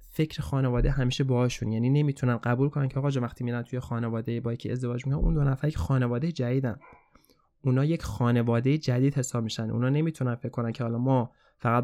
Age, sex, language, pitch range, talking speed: 20-39, male, Persian, 120-145 Hz, 195 wpm